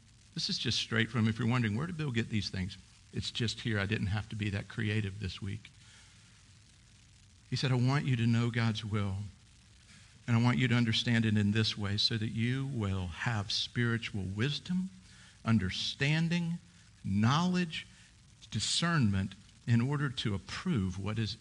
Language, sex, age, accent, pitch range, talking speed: English, male, 50-69, American, 105-130 Hz, 170 wpm